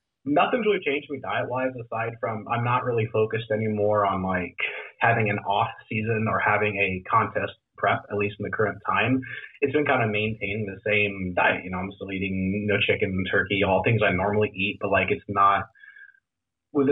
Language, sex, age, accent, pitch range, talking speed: English, male, 30-49, American, 100-120 Hz, 200 wpm